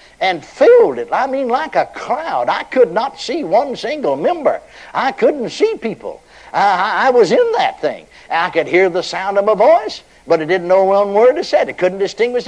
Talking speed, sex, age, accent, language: 210 wpm, male, 60-79, American, English